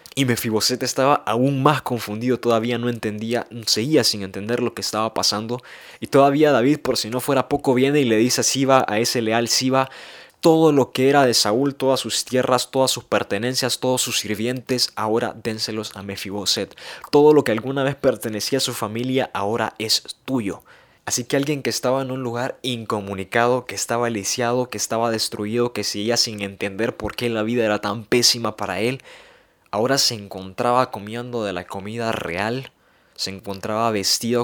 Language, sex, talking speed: Spanish, male, 180 wpm